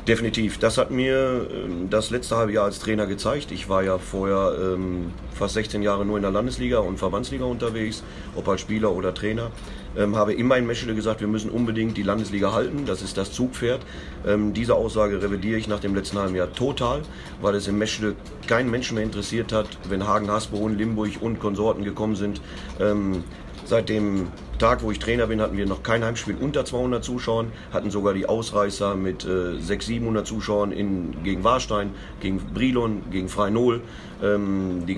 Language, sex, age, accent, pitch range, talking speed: German, male, 40-59, German, 100-110 Hz, 190 wpm